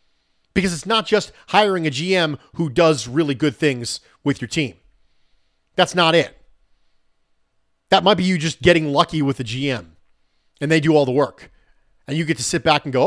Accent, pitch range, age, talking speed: American, 120-175 Hz, 40-59, 195 wpm